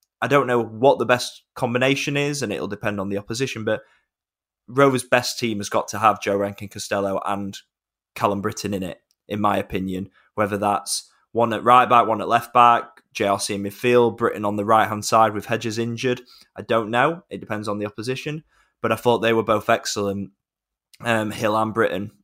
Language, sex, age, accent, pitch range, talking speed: English, male, 20-39, British, 100-120 Hz, 195 wpm